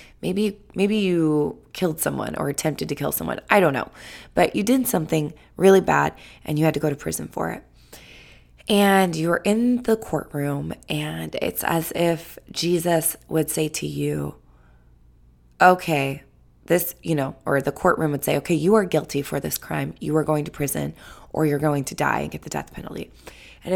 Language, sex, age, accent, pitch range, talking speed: English, female, 20-39, American, 145-185 Hz, 185 wpm